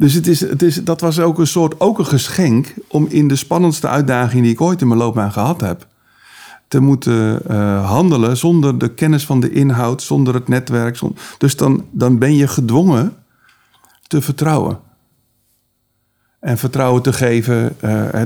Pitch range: 110-135 Hz